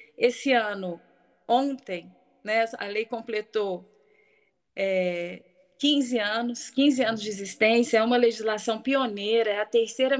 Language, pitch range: Portuguese, 210-250 Hz